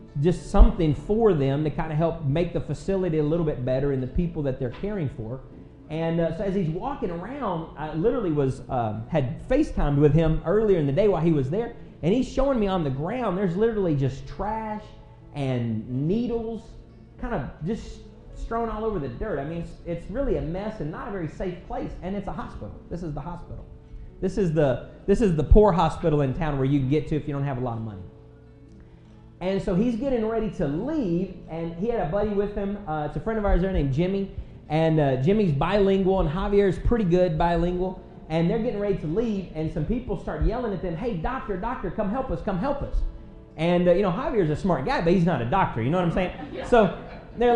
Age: 40-59